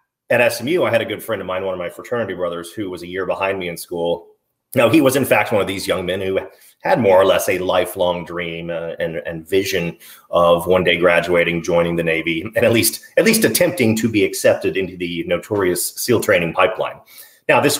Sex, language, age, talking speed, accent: male, English, 30-49, 230 wpm, American